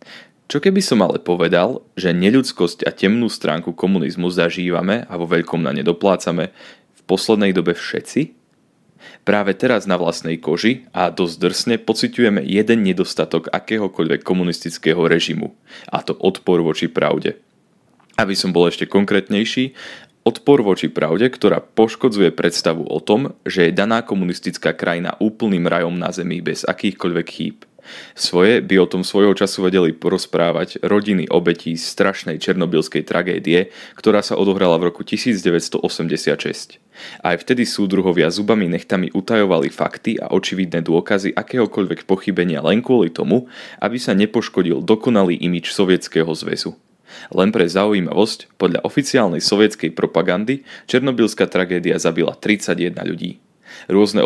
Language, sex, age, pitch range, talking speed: Slovak, male, 20-39, 85-105 Hz, 130 wpm